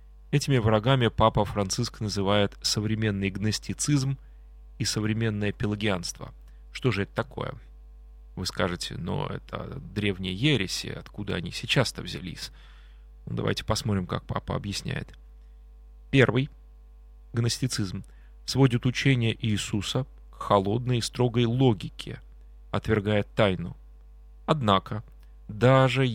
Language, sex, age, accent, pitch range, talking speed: Russian, male, 30-49, native, 85-120 Hz, 100 wpm